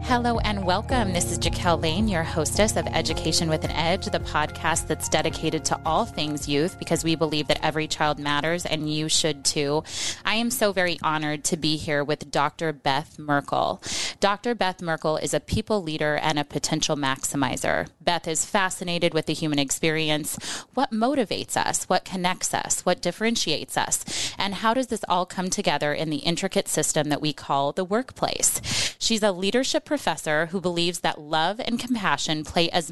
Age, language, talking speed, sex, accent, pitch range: 20-39, English, 185 wpm, female, American, 155-195 Hz